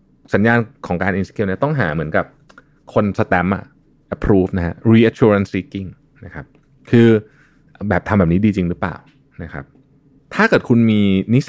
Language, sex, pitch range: Thai, male, 90-130 Hz